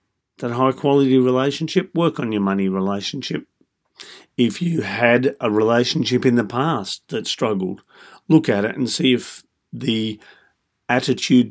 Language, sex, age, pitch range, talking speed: English, male, 50-69, 105-140 Hz, 135 wpm